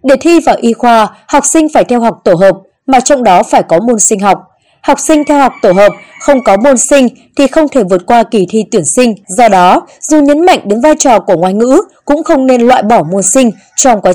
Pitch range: 210-290 Hz